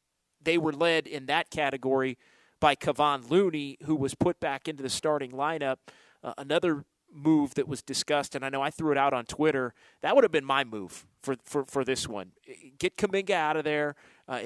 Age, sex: 30-49, male